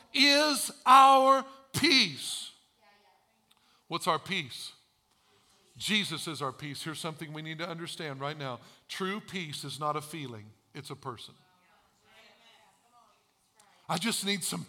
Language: English